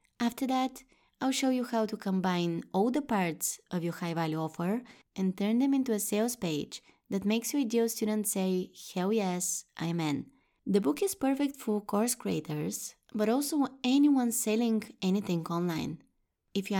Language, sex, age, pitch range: English, female, 20-39, 180-235 Hz